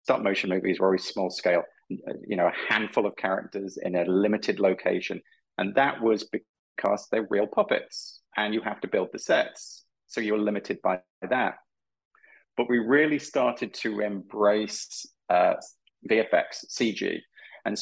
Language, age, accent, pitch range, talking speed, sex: English, 30-49, British, 95-115 Hz, 155 wpm, male